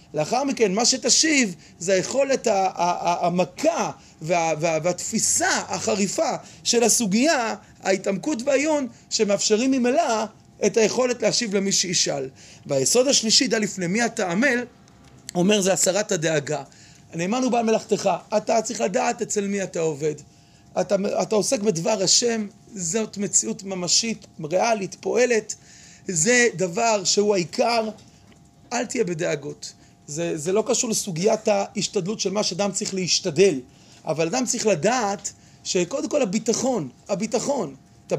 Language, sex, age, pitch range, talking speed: Hebrew, male, 30-49, 180-235 Hz, 135 wpm